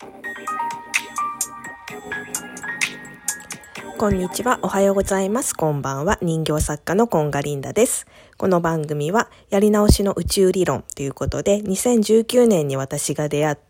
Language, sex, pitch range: Japanese, female, 145-205 Hz